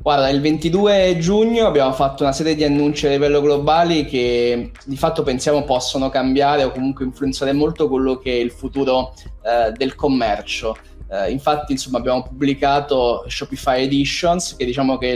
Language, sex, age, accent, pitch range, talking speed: Italian, male, 20-39, native, 130-150 Hz, 165 wpm